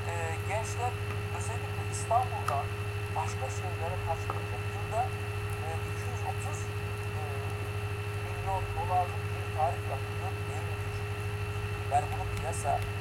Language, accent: Turkish, native